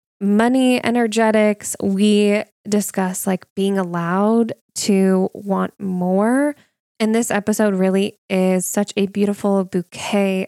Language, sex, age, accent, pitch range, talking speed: English, female, 10-29, American, 180-210 Hz, 110 wpm